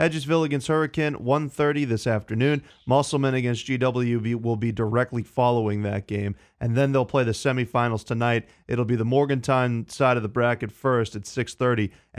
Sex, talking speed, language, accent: male, 160 wpm, English, American